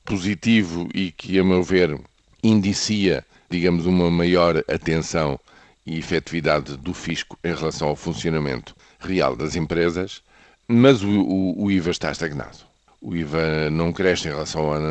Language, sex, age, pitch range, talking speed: Portuguese, male, 50-69, 85-105 Hz, 150 wpm